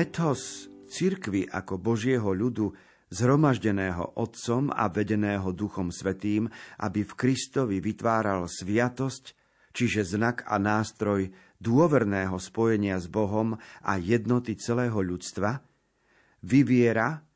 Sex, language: male, Slovak